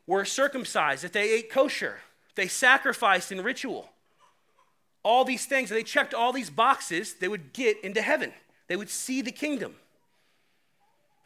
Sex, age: male, 30-49